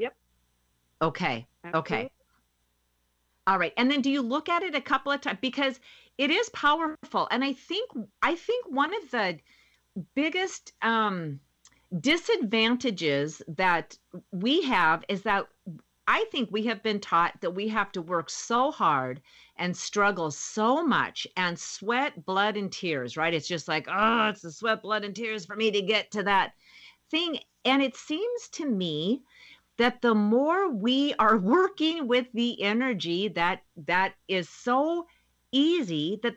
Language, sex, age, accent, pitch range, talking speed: English, female, 50-69, American, 170-260 Hz, 155 wpm